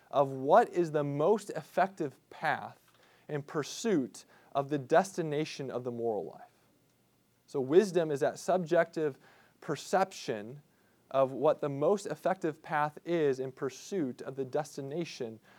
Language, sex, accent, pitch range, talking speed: English, male, American, 130-175 Hz, 130 wpm